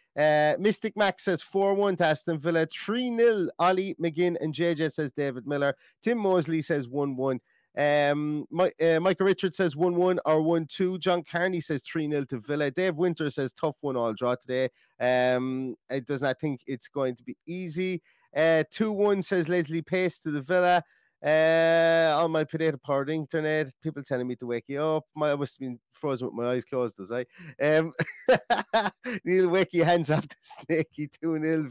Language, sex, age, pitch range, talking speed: English, male, 30-49, 140-175 Hz, 180 wpm